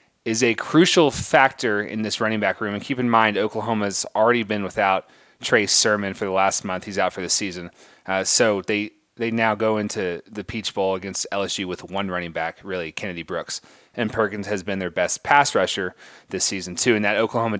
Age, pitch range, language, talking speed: 30-49, 100-135 Hz, English, 210 wpm